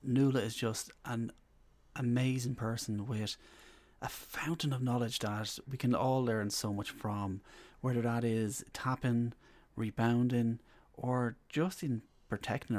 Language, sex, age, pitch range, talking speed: English, male, 30-49, 105-130 Hz, 130 wpm